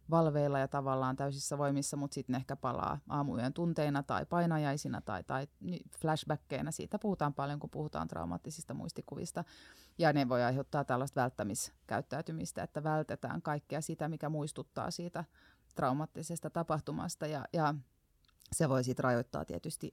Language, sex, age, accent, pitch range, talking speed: Finnish, female, 30-49, native, 140-170 Hz, 140 wpm